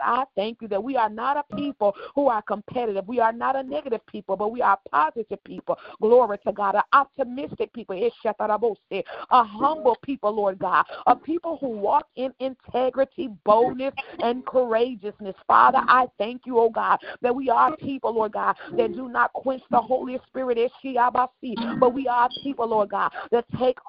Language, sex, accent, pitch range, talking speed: English, female, American, 215-265 Hz, 180 wpm